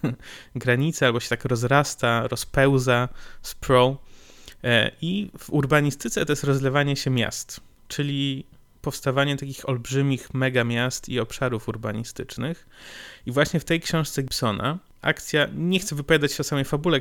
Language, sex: Polish, male